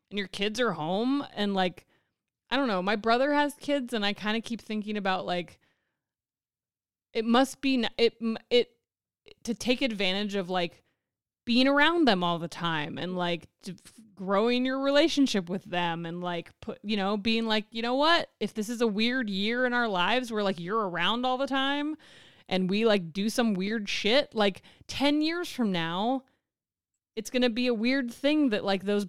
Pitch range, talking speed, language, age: 195-255 Hz, 195 wpm, English, 20-39